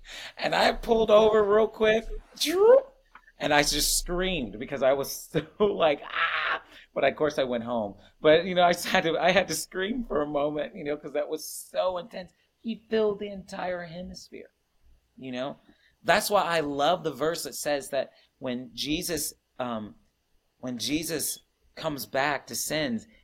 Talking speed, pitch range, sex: 175 wpm, 135-205 Hz, male